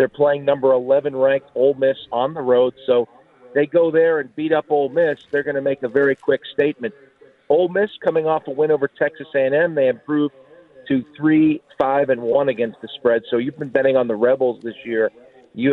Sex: male